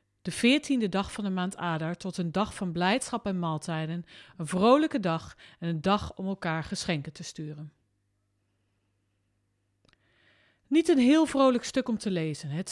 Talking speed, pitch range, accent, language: 160 wpm, 155-220 Hz, Dutch, Dutch